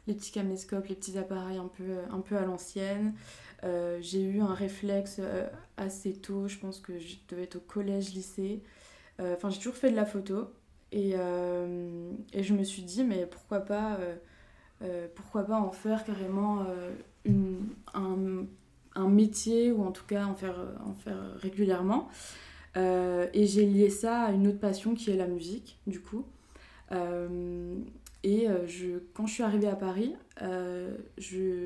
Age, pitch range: 20-39, 185-210 Hz